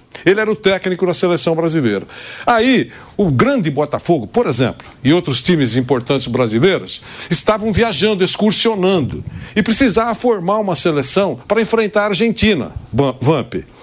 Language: Portuguese